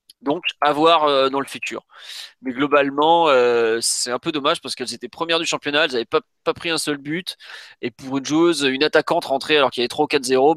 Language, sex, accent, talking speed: French, male, French, 225 wpm